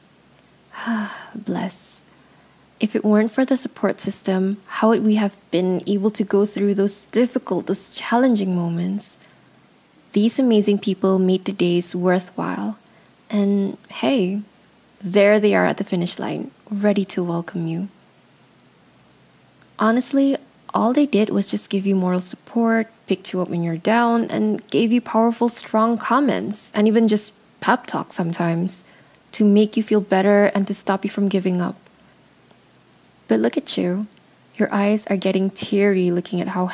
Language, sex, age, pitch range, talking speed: English, female, 20-39, 190-215 Hz, 155 wpm